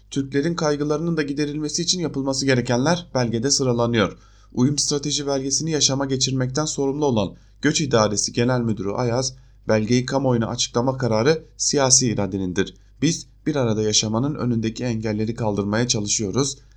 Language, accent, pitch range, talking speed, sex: German, Turkish, 110-145 Hz, 125 wpm, male